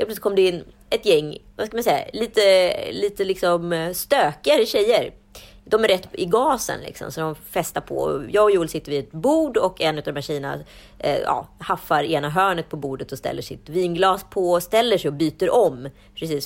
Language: Swedish